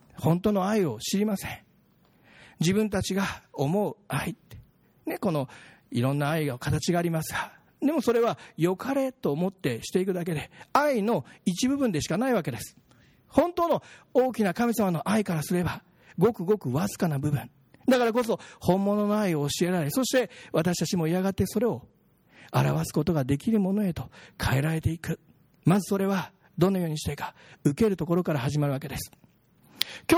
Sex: male